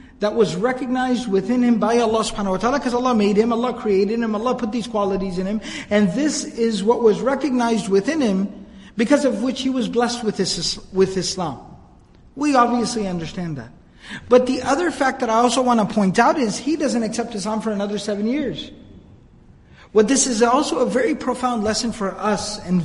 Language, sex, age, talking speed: English, male, 50-69, 200 wpm